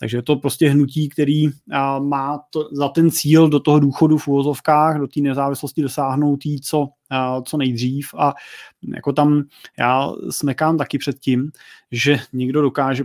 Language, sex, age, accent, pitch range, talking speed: Czech, male, 30-49, native, 135-155 Hz, 165 wpm